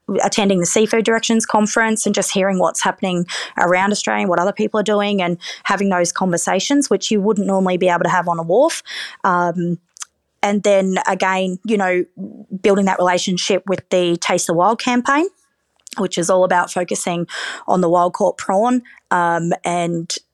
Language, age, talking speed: English, 20-39, 175 wpm